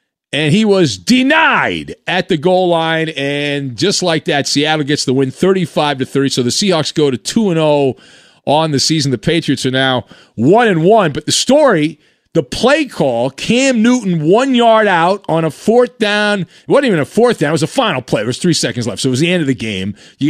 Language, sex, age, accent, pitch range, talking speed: English, male, 40-59, American, 140-195 Hz, 215 wpm